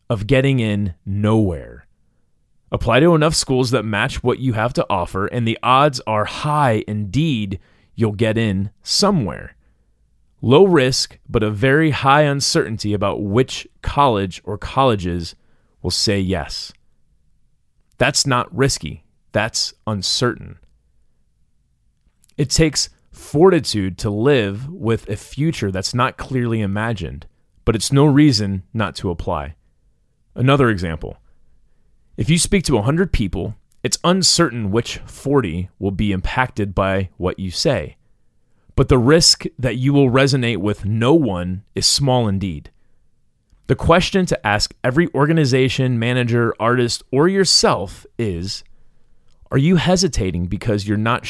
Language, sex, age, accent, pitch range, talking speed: English, male, 30-49, American, 100-135 Hz, 130 wpm